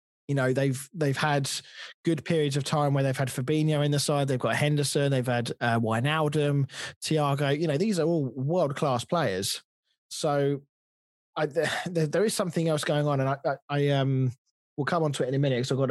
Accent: British